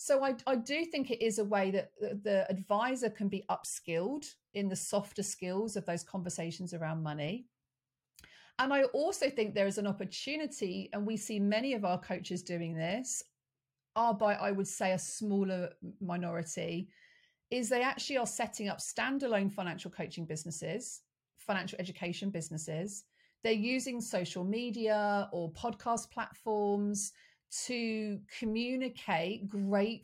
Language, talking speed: English, 145 wpm